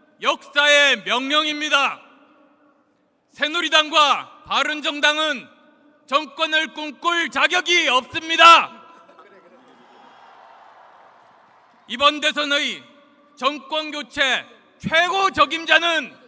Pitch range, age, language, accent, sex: 265-315 Hz, 40-59, Korean, native, male